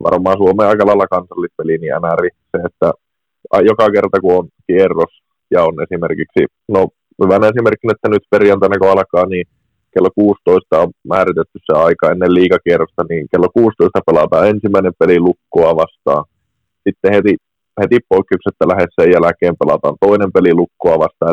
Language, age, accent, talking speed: Finnish, 20-39, native, 145 wpm